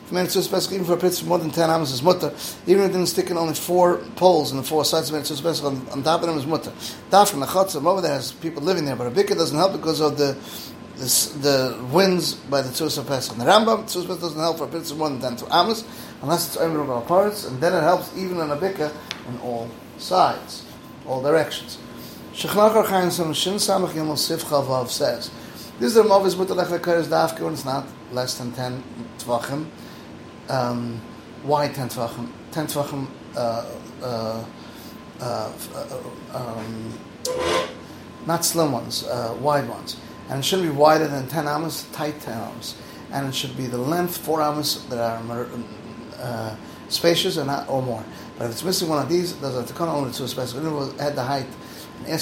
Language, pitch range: English, 125-170 Hz